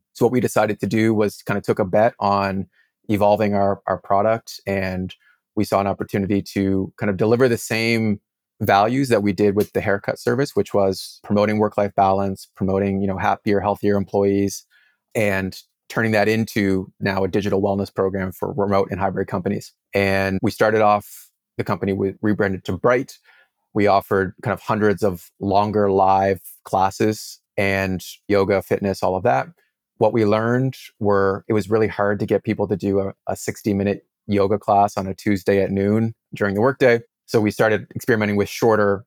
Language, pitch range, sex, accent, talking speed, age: English, 95-105 Hz, male, American, 180 wpm, 30-49